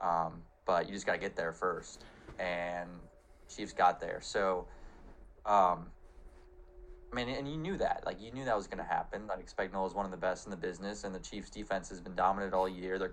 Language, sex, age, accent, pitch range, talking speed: English, male, 20-39, American, 85-100 Hz, 225 wpm